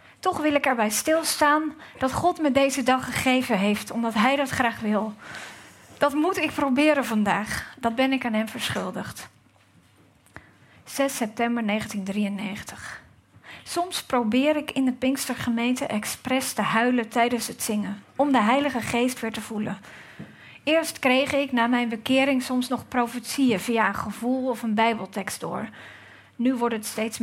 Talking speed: 155 wpm